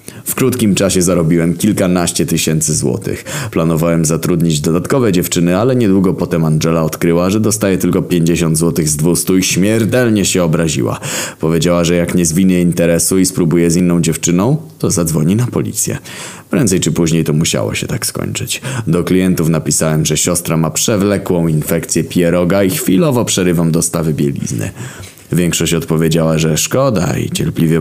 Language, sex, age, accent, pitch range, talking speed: Polish, male, 20-39, native, 80-95 Hz, 150 wpm